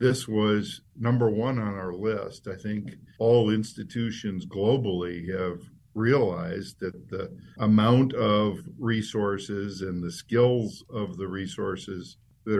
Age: 50-69